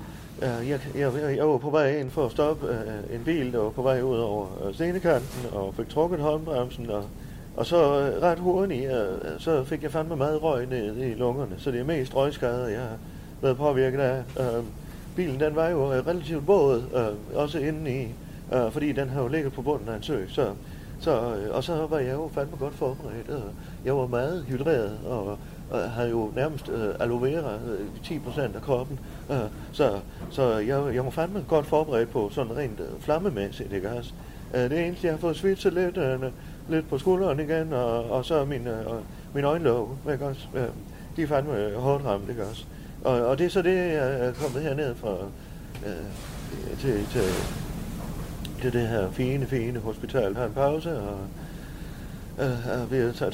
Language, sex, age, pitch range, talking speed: Danish, male, 30-49, 120-150 Hz, 195 wpm